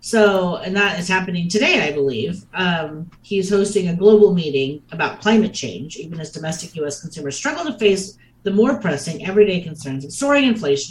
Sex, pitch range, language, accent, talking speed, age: female, 145-200 Hz, English, American, 180 wpm, 40-59